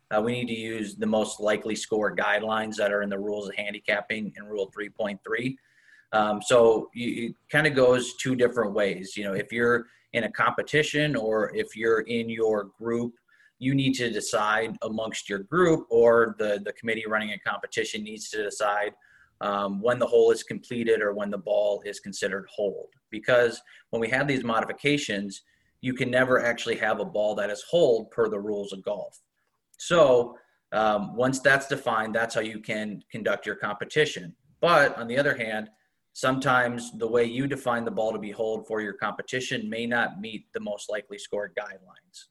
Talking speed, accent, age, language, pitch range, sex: 185 wpm, American, 30-49, English, 105-125 Hz, male